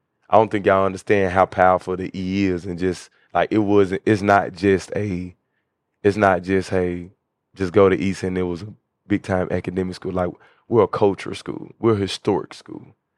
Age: 20-39